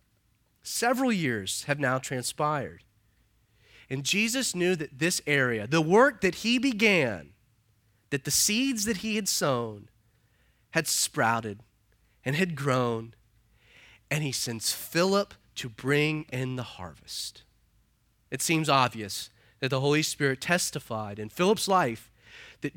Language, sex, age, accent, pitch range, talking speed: English, male, 30-49, American, 115-190 Hz, 130 wpm